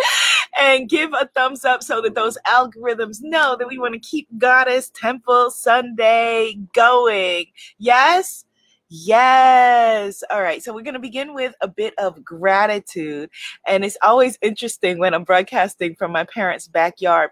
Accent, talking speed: American, 150 wpm